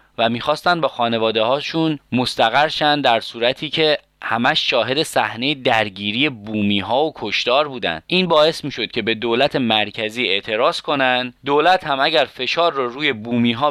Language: Persian